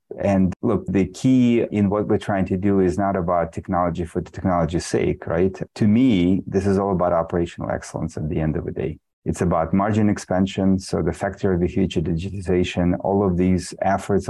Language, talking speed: English, 200 wpm